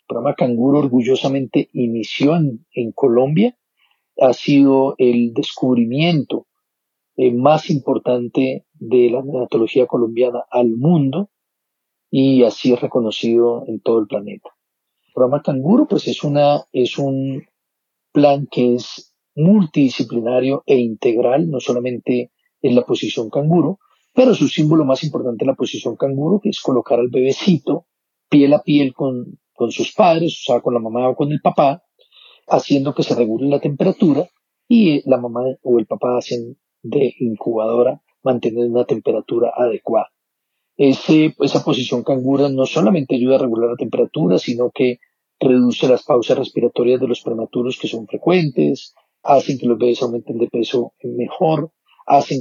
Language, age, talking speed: Spanish, 40-59, 150 wpm